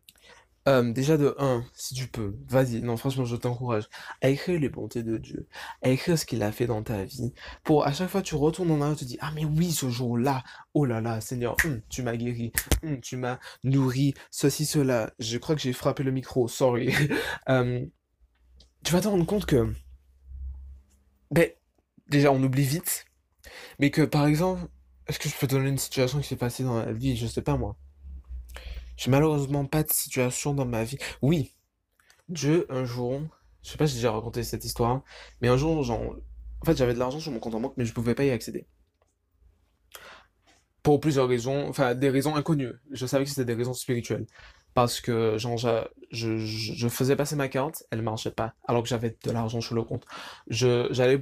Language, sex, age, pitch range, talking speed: French, male, 20-39, 115-140 Hz, 205 wpm